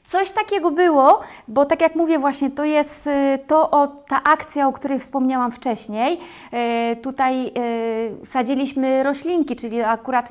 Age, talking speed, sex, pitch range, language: 30-49, 145 wpm, female, 235-275 Hz, Polish